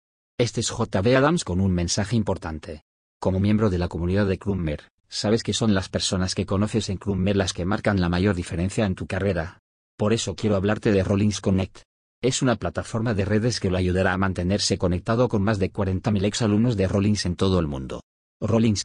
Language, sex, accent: English, male, Spanish